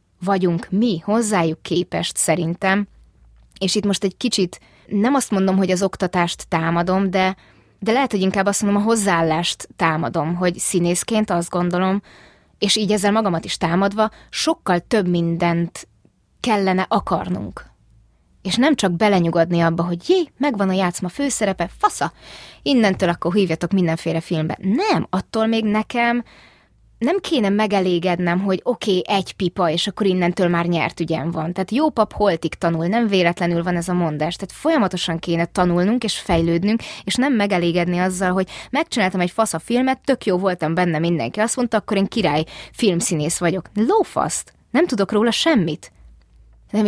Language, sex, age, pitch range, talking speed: Hungarian, female, 20-39, 175-220 Hz, 155 wpm